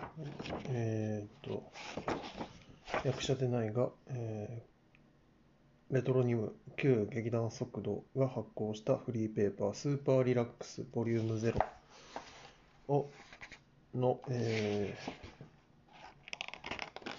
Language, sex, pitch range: Japanese, male, 110-125 Hz